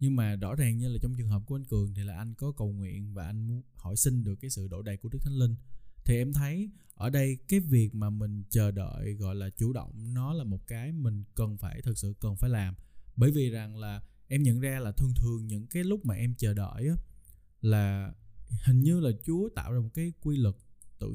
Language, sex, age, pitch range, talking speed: Vietnamese, male, 20-39, 100-135 Hz, 255 wpm